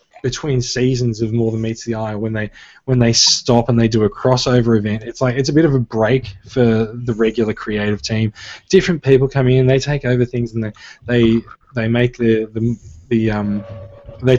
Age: 20-39